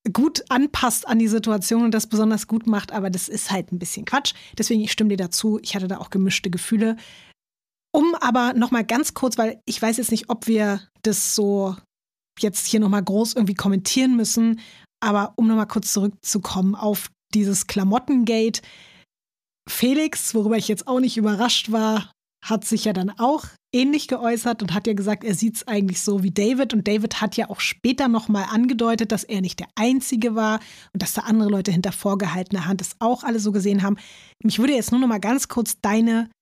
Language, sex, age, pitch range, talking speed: German, female, 20-39, 205-235 Hz, 195 wpm